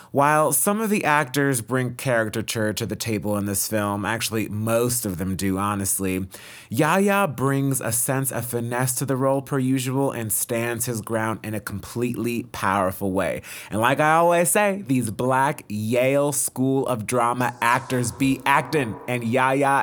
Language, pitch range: English, 115-145 Hz